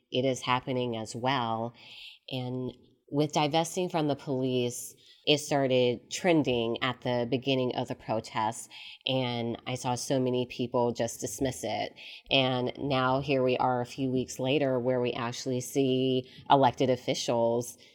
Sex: female